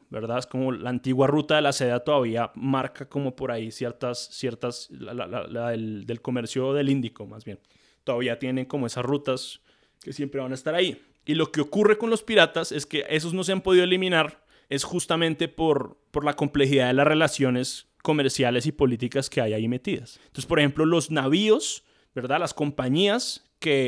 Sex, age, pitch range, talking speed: male, 20-39, 130-160 Hz, 195 wpm